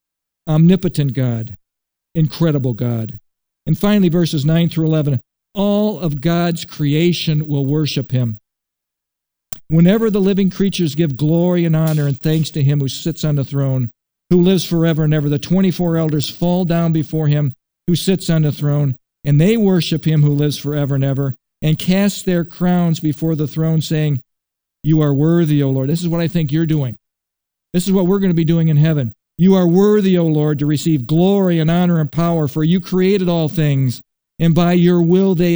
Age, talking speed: 50-69, 190 wpm